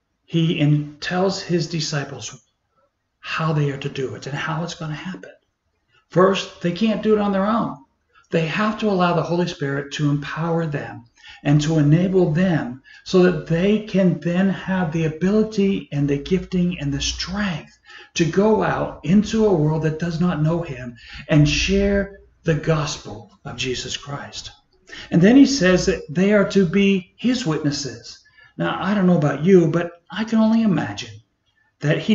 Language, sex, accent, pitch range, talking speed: English, male, American, 150-195 Hz, 175 wpm